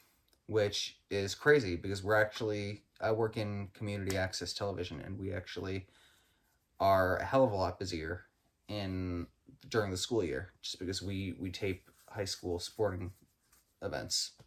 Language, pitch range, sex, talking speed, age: English, 90-120 Hz, male, 150 wpm, 20-39